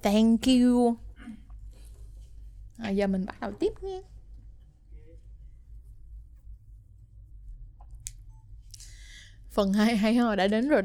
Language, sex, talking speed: Vietnamese, female, 90 wpm